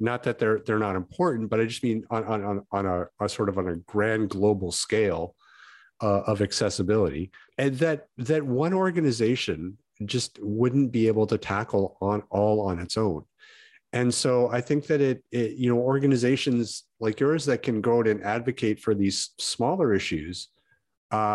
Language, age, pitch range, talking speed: English, 50-69, 105-130 Hz, 185 wpm